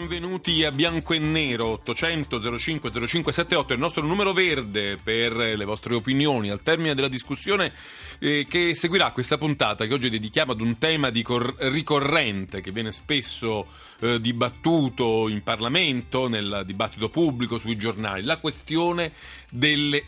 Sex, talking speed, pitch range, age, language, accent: male, 145 wpm, 110-150 Hz, 40-59, Italian, native